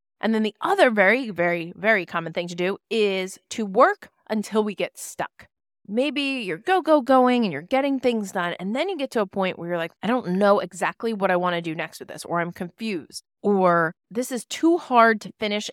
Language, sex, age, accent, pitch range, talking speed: English, female, 30-49, American, 175-230 Hz, 230 wpm